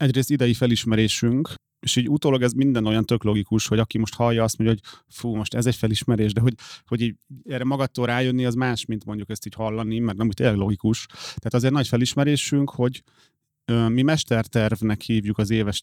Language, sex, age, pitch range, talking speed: Hungarian, male, 30-49, 110-130 Hz, 190 wpm